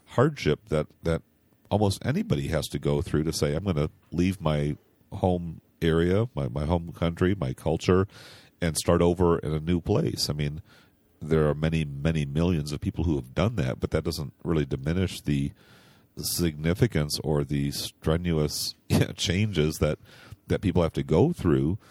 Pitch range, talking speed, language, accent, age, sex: 75-90 Hz, 170 wpm, English, American, 40-59, male